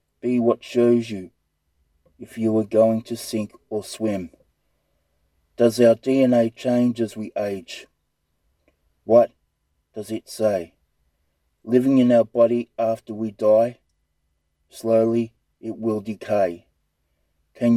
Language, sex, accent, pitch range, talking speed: English, male, Australian, 90-115 Hz, 120 wpm